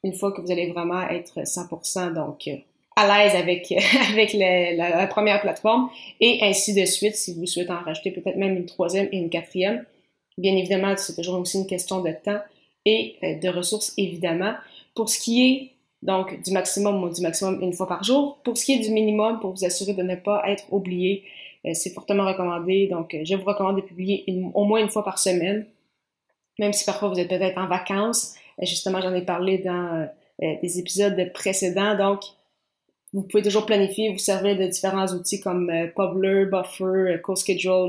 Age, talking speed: 20-39, 200 wpm